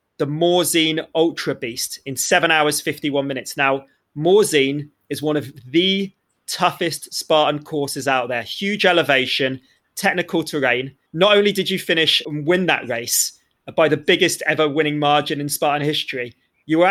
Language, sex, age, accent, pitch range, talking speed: English, male, 30-49, British, 145-175 Hz, 155 wpm